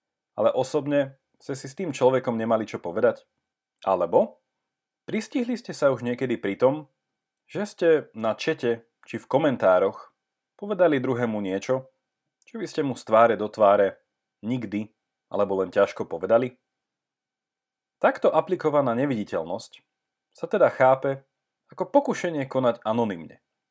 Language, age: Slovak, 30-49